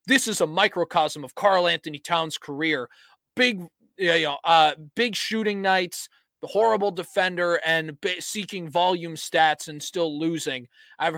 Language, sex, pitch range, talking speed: English, male, 155-180 Hz, 135 wpm